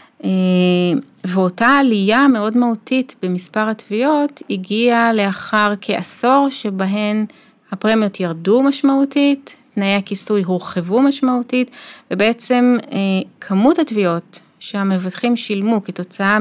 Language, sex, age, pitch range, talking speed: Hebrew, female, 30-49, 185-235 Hz, 90 wpm